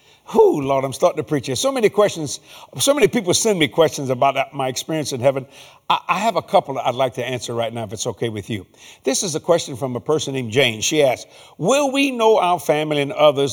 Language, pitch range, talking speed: English, 140-215 Hz, 250 wpm